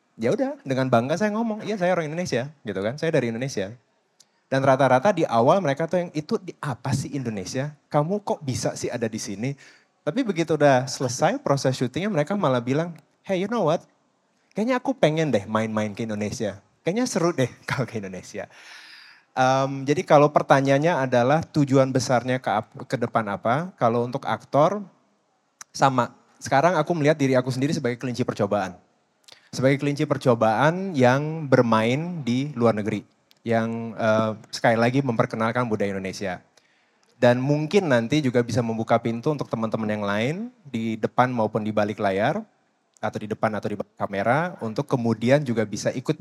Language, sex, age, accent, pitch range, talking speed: Indonesian, male, 20-39, native, 115-150 Hz, 165 wpm